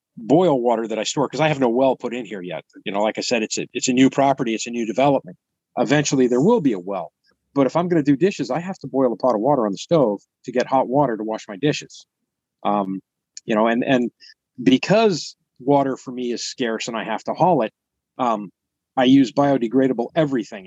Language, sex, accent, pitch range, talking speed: English, male, American, 115-140 Hz, 240 wpm